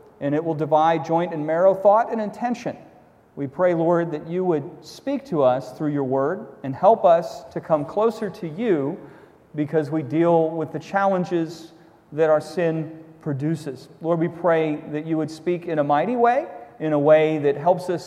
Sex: male